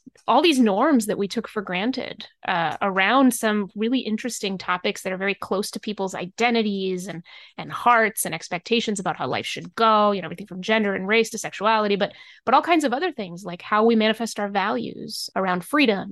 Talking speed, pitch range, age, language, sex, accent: 205 wpm, 205-255 Hz, 20-39, English, female, American